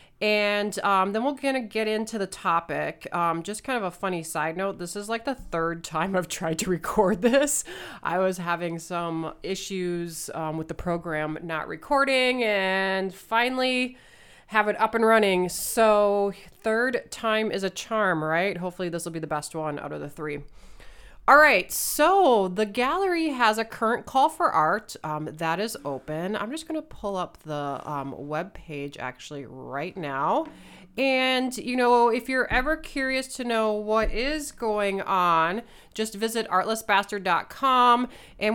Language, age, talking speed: English, 30-49, 170 wpm